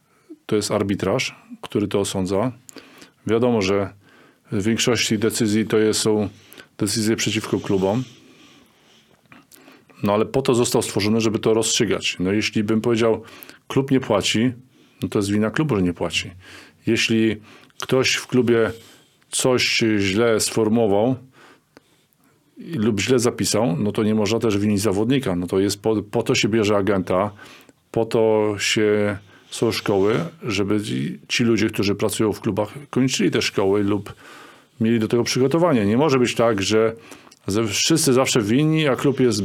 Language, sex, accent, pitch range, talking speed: Polish, male, native, 105-125 Hz, 150 wpm